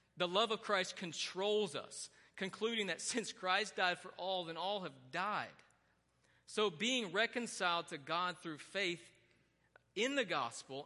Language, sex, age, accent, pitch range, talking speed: English, male, 40-59, American, 160-205 Hz, 150 wpm